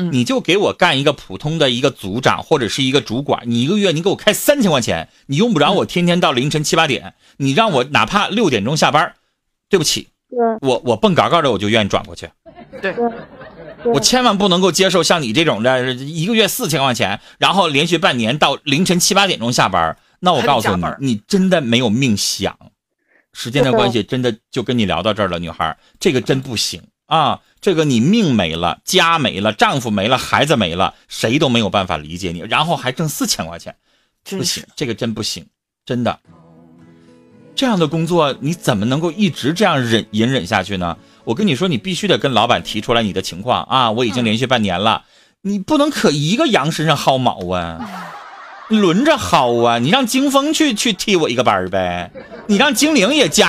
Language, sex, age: Chinese, male, 30-49